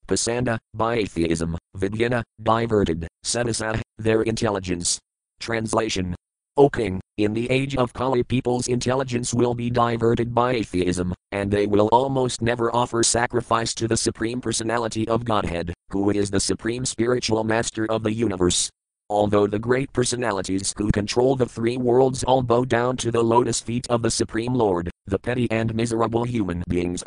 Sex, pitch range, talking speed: male, 100-120 Hz, 155 wpm